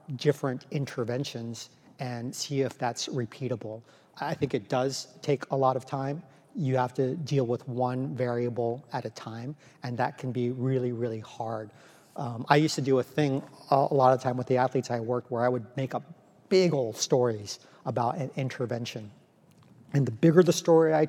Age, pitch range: 40-59, 125-150 Hz